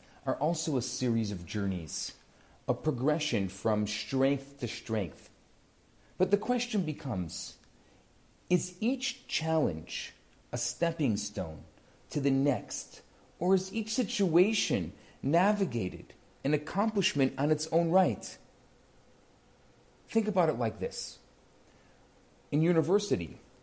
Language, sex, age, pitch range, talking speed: English, male, 40-59, 120-185 Hz, 110 wpm